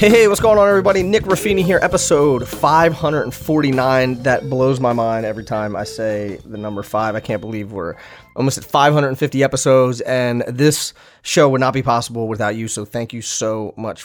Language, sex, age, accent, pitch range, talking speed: English, male, 30-49, American, 110-135 Hz, 185 wpm